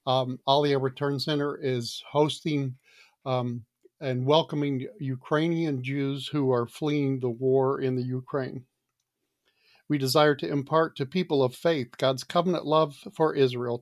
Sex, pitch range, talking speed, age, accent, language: male, 130-155 Hz, 140 wpm, 50-69, American, English